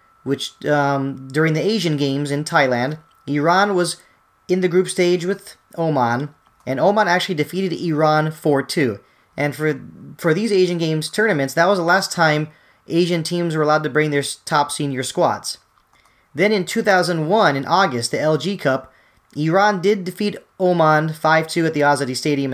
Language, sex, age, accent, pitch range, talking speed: English, male, 30-49, American, 140-175 Hz, 160 wpm